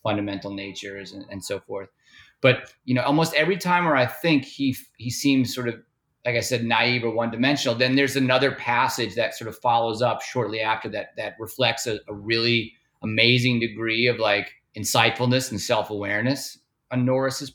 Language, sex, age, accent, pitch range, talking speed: English, male, 30-49, American, 120-140 Hz, 175 wpm